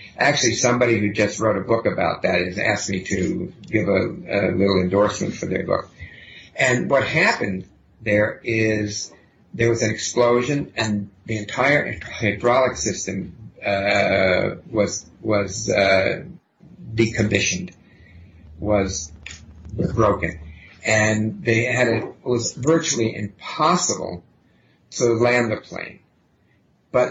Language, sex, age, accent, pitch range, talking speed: English, male, 50-69, American, 100-120 Hz, 120 wpm